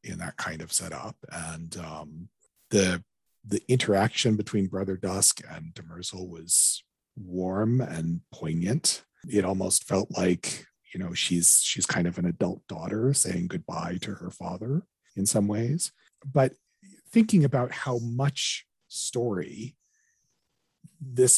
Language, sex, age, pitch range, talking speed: English, male, 40-59, 95-130 Hz, 130 wpm